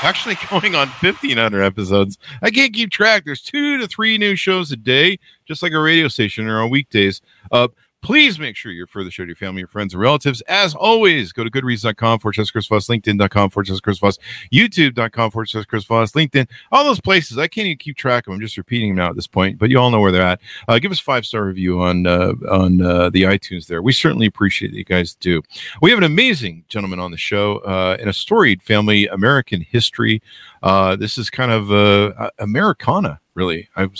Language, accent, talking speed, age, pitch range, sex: English, American, 220 wpm, 50-69, 95-140 Hz, male